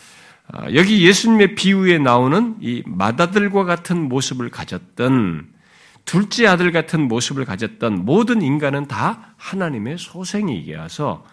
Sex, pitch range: male, 130-200 Hz